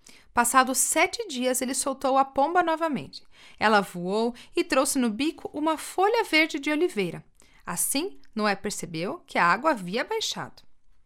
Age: 40-59